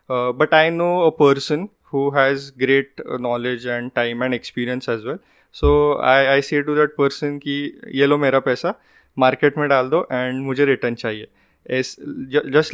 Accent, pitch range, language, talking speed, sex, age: Indian, 125-150 Hz, English, 185 wpm, male, 20-39